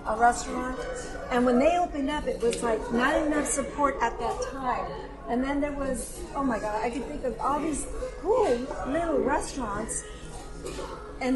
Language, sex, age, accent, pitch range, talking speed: English, female, 50-69, American, 230-285 Hz, 175 wpm